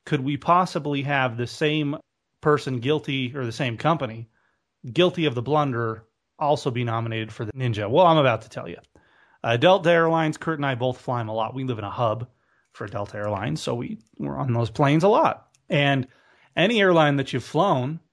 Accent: American